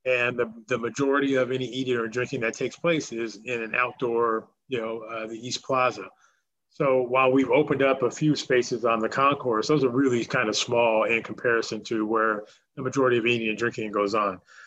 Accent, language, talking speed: American, English, 210 wpm